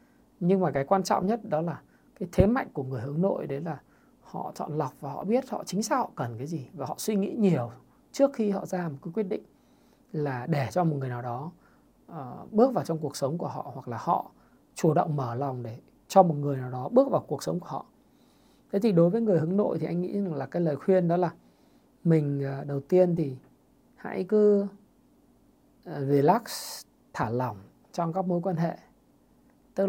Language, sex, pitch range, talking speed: Vietnamese, male, 145-200 Hz, 215 wpm